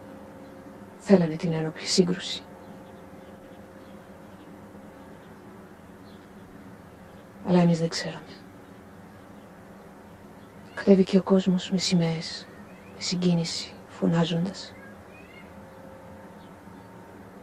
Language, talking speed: Greek, 60 wpm